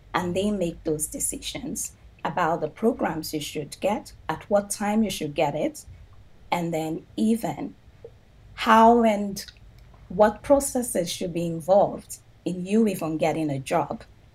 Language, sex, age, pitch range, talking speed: English, female, 30-49, 160-225 Hz, 140 wpm